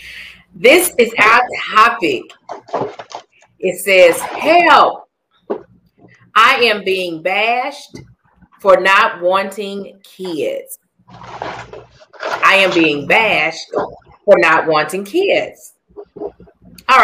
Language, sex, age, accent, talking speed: English, female, 40-59, American, 85 wpm